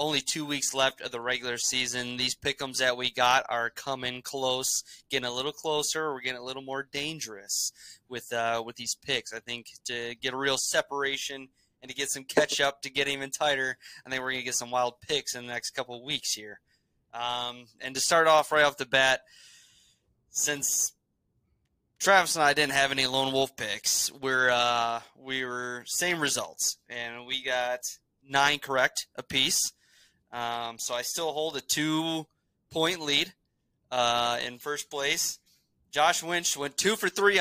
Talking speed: 180 wpm